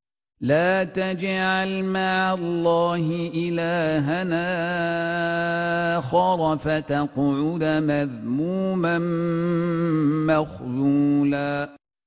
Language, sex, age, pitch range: Arabic, male, 50-69, 170-190 Hz